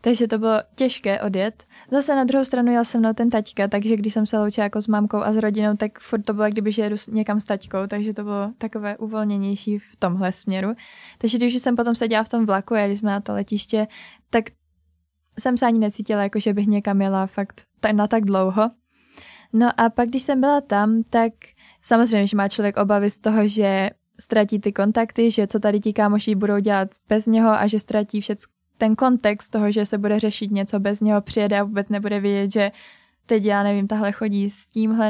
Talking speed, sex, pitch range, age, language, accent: 210 wpm, female, 205-225 Hz, 20-39, Czech, native